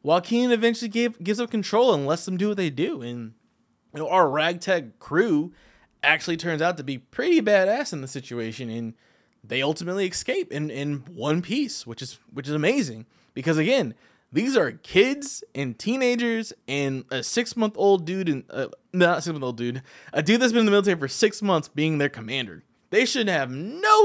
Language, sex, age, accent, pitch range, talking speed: English, male, 20-39, American, 135-220 Hz, 195 wpm